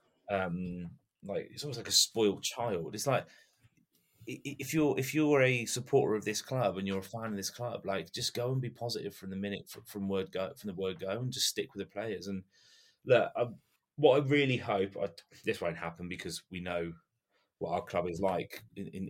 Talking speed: 215 wpm